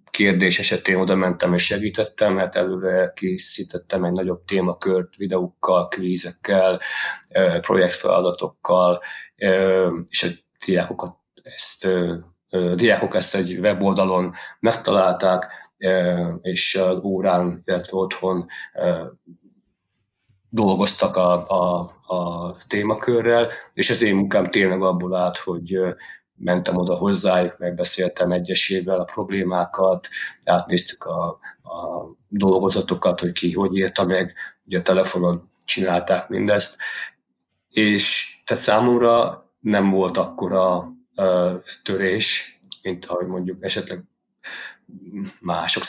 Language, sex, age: Hungarian, male, 30-49